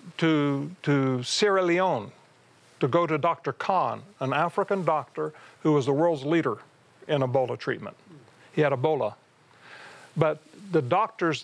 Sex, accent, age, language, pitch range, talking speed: male, American, 50-69, English, 140-175 Hz, 135 wpm